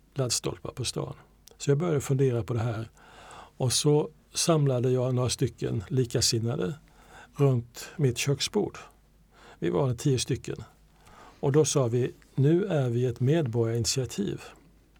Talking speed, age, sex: 130 wpm, 60-79, male